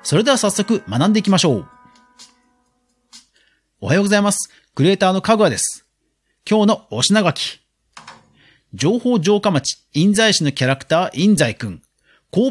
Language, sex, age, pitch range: Japanese, male, 40-59, 140-215 Hz